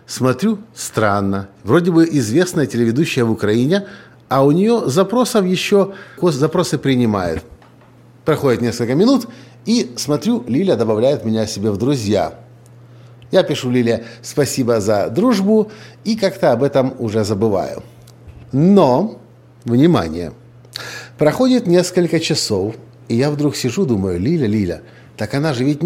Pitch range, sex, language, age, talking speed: 120-160 Hz, male, Russian, 50-69, 125 wpm